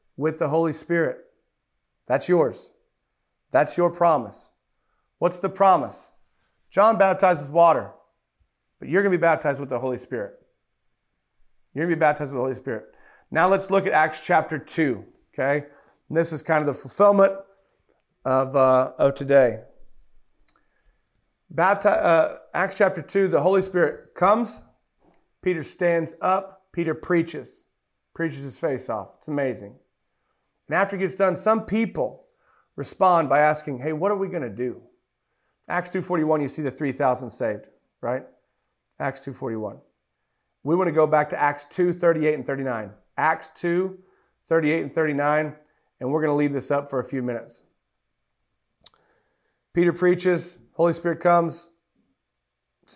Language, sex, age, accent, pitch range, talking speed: English, male, 40-59, American, 140-180 Hz, 150 wpm